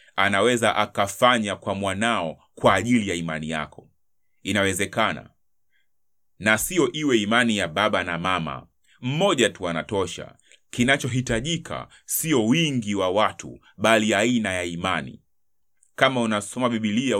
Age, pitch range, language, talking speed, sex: 30-49, 95-115 Hz, Swahili, 115 wpm, male